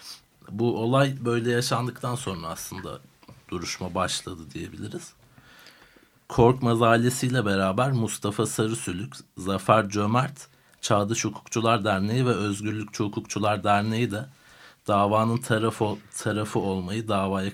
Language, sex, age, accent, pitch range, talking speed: Turkish, male, 60-79, native, 100-120 Hz, 100 wpm